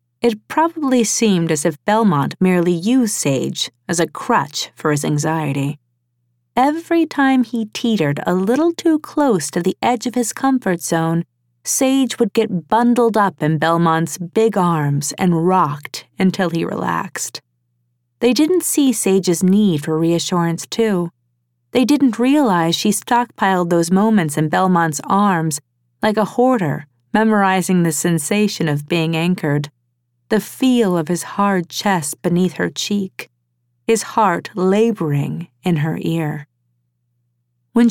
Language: English